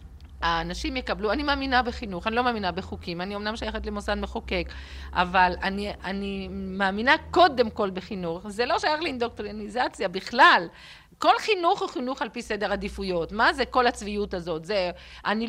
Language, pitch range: Hebrew, 180-250 Hz